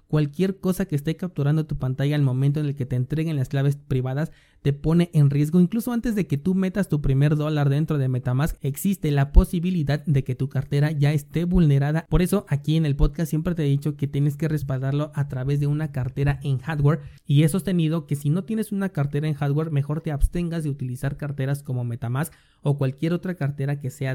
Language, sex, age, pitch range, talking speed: Spanish, male, 30-49, 135-155 Hz, 220 wpm